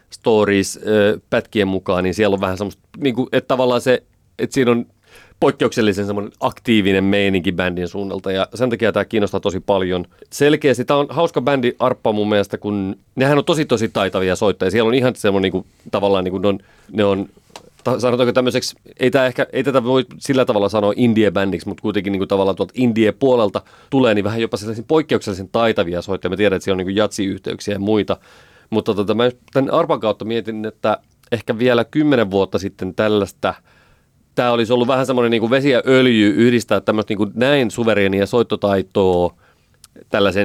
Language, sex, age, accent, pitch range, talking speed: Finnish, male, 30-49, native, 100-125 Hz, 180 wpm